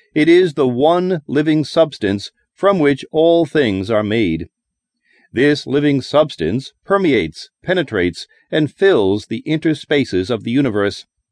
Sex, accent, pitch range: male, American, 120-170 Hz